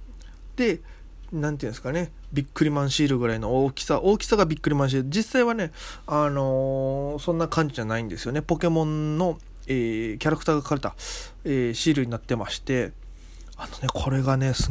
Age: 20-39